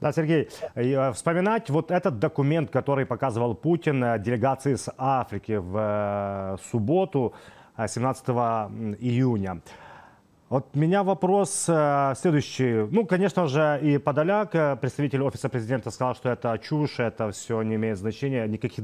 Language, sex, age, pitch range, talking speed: Ukrainian, male, 30-49, 115-160 Hz, 120 wpm